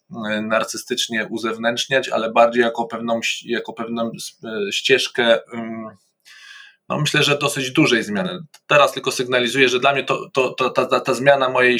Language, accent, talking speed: Polish, native, 140 wpm